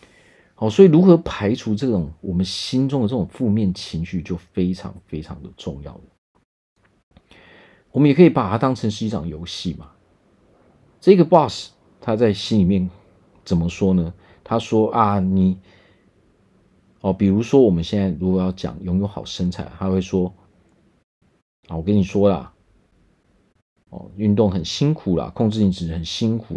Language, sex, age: Chinese, male, 40-59